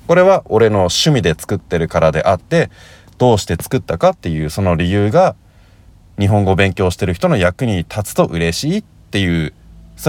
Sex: male